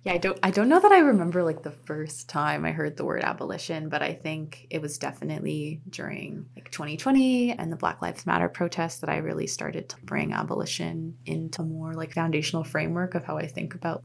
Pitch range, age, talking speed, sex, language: 155-180 Hz, 20-39, 220 wpm, female, English